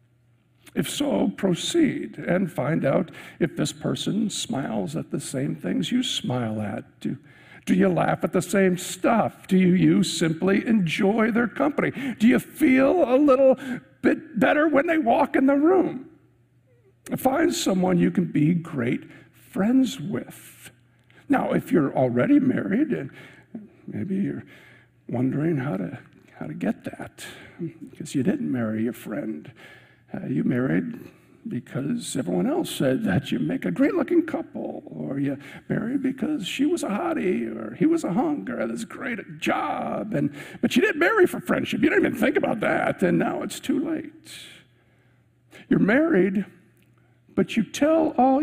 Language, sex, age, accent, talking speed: English, male, 60-79, American, 160 wpm